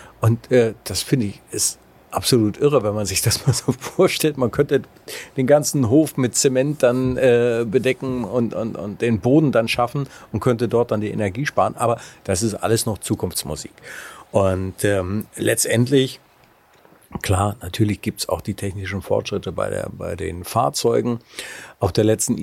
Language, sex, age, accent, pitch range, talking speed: German, male, 50-69, German, 100-130 Hz, 170 wpm